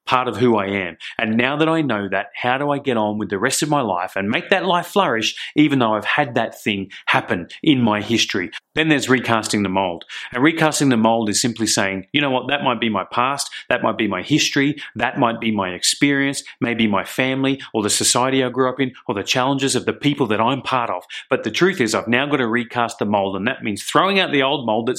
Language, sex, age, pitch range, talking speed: English, male, 30-49, 110-140 Hz, 255 wpm